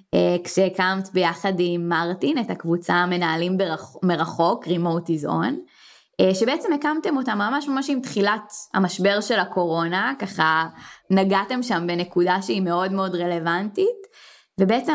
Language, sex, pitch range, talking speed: English, female, 175-200 Hz, 110 wpm